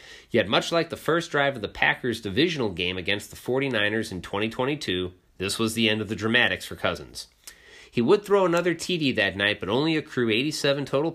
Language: English